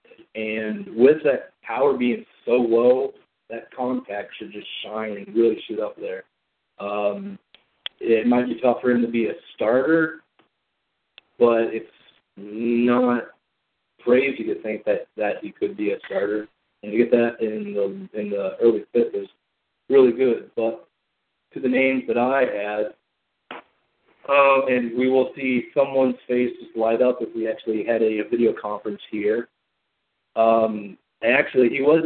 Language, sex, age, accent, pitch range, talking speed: English, male, 40-59, American, 110-125 Hz, 155 wpm